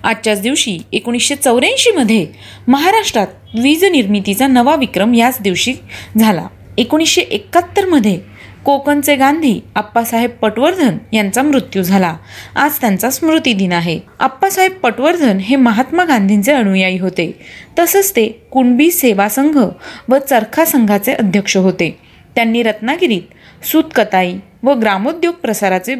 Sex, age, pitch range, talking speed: female, 30-49, 210-285 Hz, 115 wpm